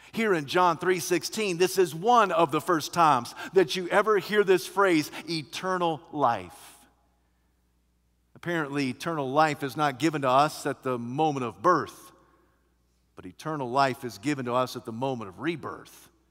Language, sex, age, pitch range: English, male, 50-69, 140-225 Hz